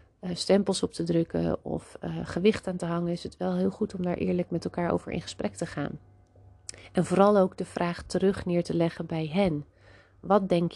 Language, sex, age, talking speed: Dutch, female, 30-49, 220 wpm